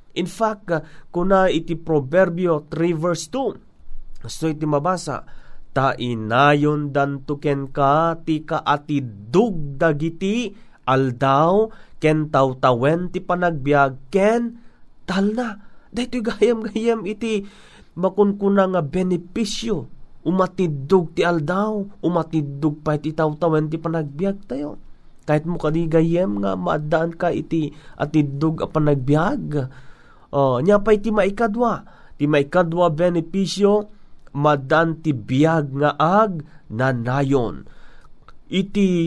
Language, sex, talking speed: Filipino, male, 110 wpm